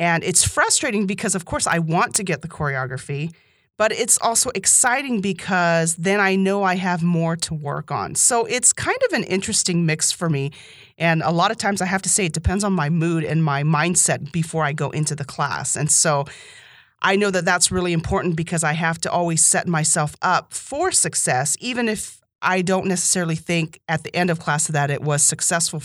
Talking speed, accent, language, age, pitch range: 210 wpm, American, English, 30-49, 155-200 Hz